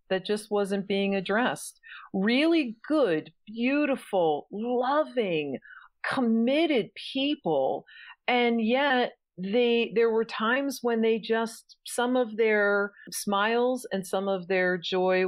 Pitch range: 165-230 Hz